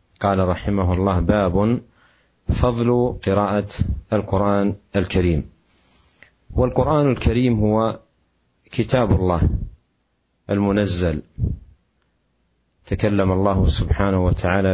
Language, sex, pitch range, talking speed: Malay, male, 85-100 Hz, 75 wpm